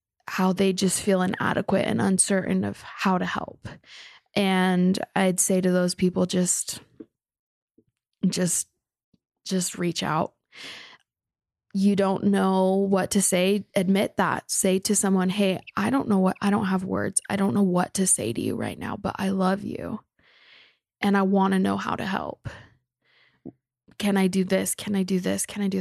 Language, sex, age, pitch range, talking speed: English, female, 20-39, 185-200 Hz, 175 wpm